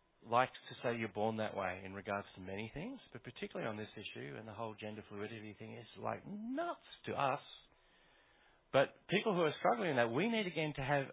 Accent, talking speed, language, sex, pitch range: Australian, 215 wpm, English, male, 105-140 Hz